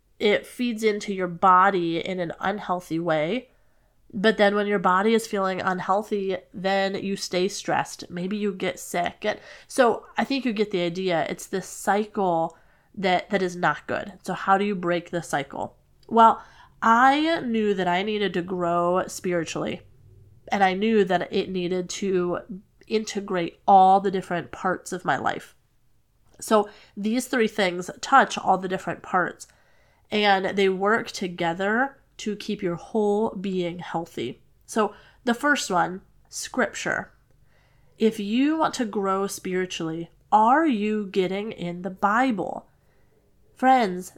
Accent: American